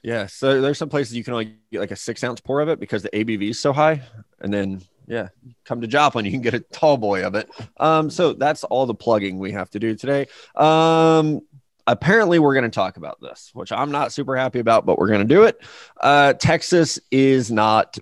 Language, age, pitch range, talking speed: English, 20-39, 110-135 Hz, 235 wpm